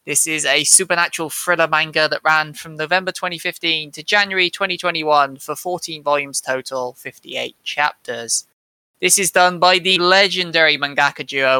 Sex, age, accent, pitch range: male, 20-39, British, 130-165 Hz